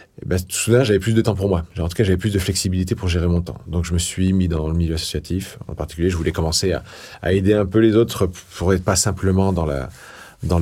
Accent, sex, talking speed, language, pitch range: French, male, 270 wpm, French, 80-95 Hz